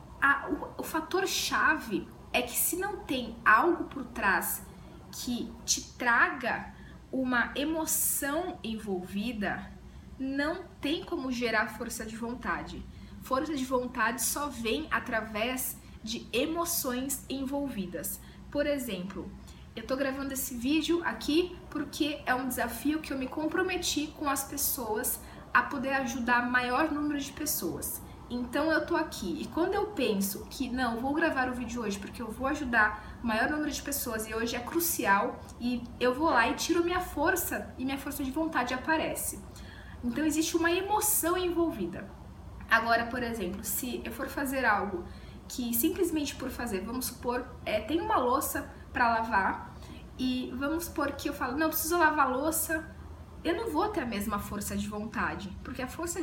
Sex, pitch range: female, 235-315 Hz